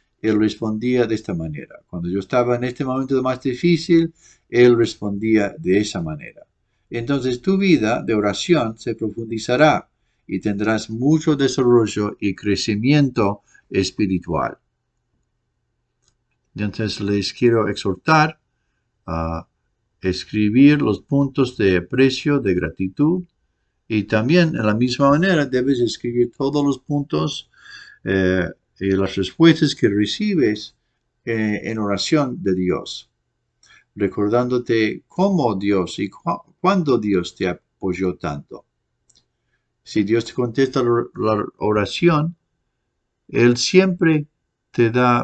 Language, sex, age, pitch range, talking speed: English, male, 50-69, 100-135 Hz, 115 wpm